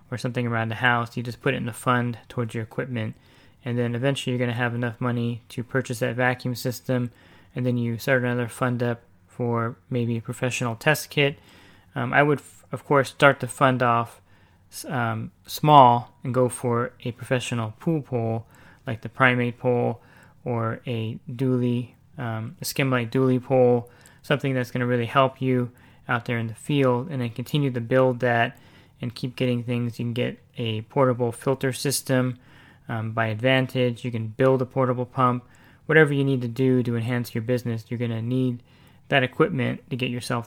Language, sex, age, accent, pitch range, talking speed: English, male, 20-39, American, 120-130 Hz, 195 wpm